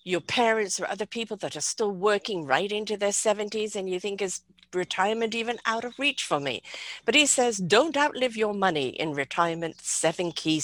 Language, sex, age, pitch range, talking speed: English, female, 50-69, 165-235 Hz, 195 wpm